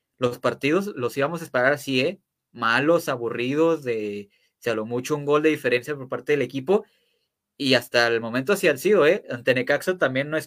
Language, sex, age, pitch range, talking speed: Spanish, male, 20-39, 125-155 Hz, 200 wpm